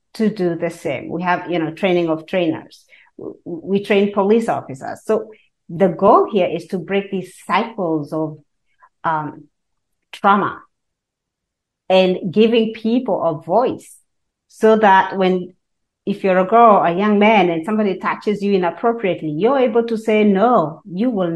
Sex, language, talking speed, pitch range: female, English, 150 wpm, 180-220 Hz